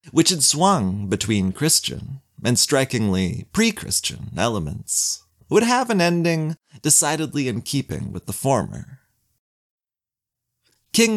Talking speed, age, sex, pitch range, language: 105 wpm, 30-49, male, 110-170 Hz, English